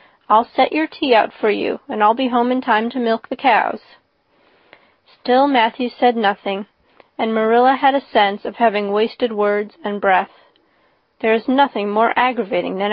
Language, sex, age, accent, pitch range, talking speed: English, female, 30-49, American, 215-250 Hz, 175 wpm